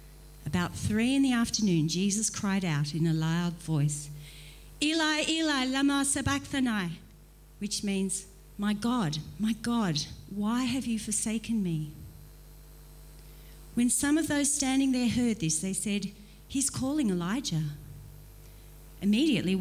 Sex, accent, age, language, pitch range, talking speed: female, Australian, 40-59, English, 160-240 Hz, 125 wpm